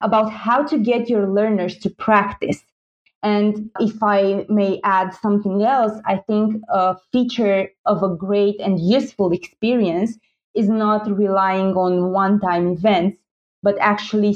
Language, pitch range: English, 190-215 Hz